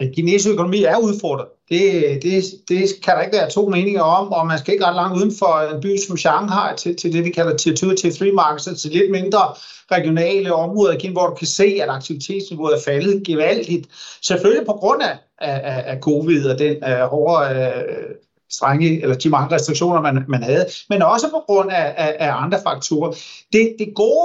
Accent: native